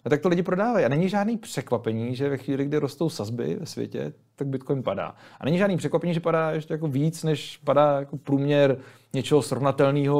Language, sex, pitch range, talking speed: Czech, male, 125-155 Hz, 205 wpm